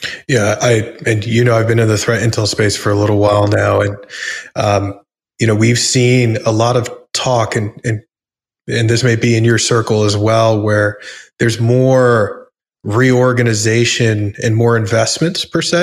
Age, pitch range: 20-39, 110-125 Hz